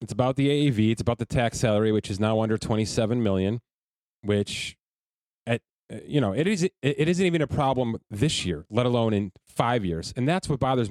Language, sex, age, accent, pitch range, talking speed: English, male, 30-49, American, 105-140 Hz, 205 wpm